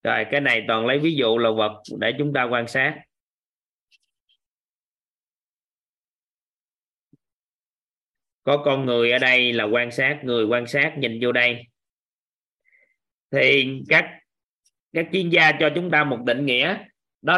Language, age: Vietnamese, 20-39